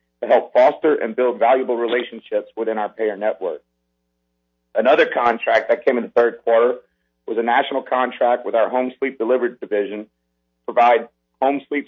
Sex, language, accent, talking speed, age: male, English, American, 165 wpm, 40-59